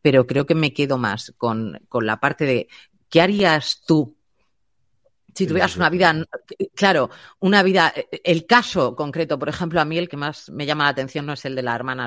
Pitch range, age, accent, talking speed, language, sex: 125-175 Hz, 30-49, Spanish, 205 wpm, Spanish, female